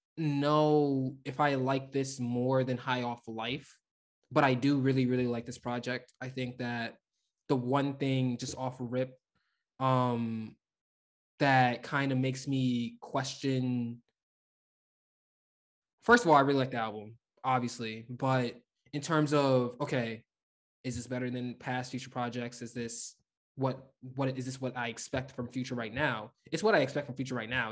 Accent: American